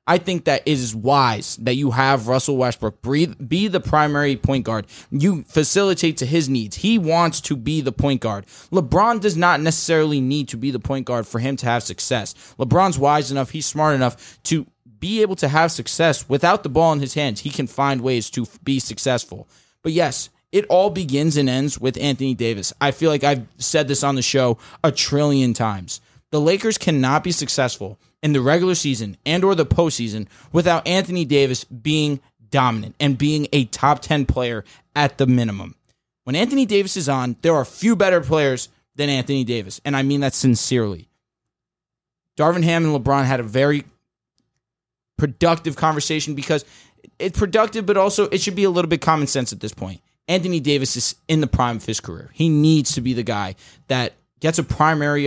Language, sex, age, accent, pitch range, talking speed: English, male, 20-39, American, 125-160 Hz, 195 wpm